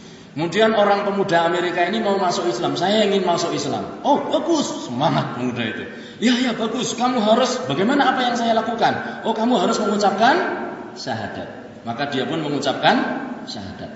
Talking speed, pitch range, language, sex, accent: 160 wpm, 200-285 Hz, Indonesian, male, native